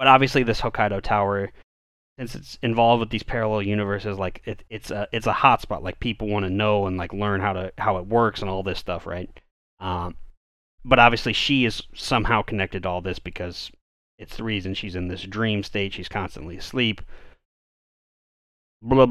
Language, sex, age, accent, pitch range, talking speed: English, male, 30-49, American, 90-115 Hz, 190 wpm